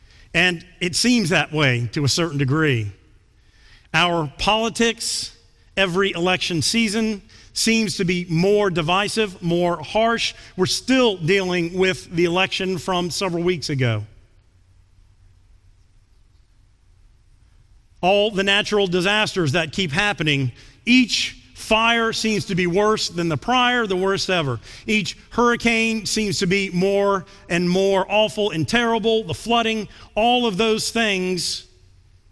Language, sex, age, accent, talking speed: English, male, 40-59, American, 125 wpm